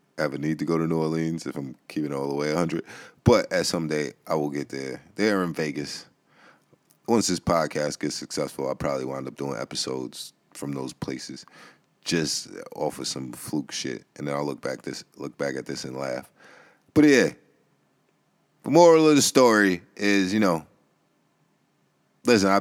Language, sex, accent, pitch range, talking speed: English, male, American, 75-95 Hz, 185 wpm